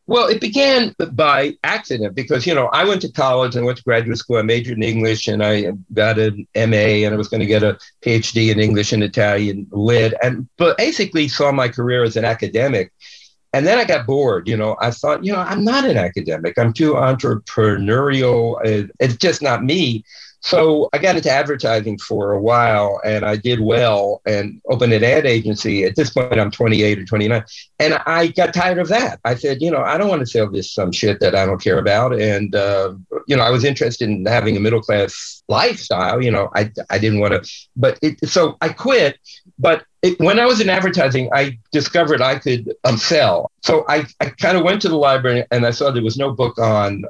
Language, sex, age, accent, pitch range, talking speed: English, male, 50-69, American, 110-145 Hz, 220 wpm